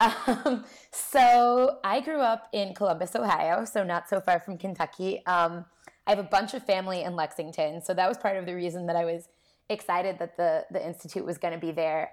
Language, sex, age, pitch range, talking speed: English, female, 20-39, 165-195 Hz, 215 wpm